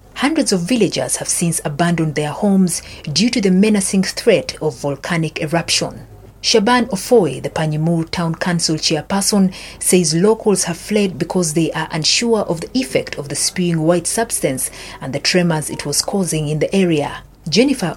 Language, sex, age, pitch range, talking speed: English, female, 40-59, 155-205 Hz, 165 wpm